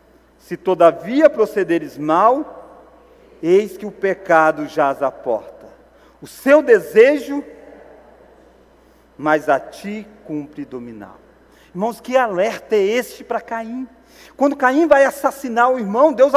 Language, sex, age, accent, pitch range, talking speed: Portuguese, male, 40-59, Brazilian, 200-275 Hz, 120 wpm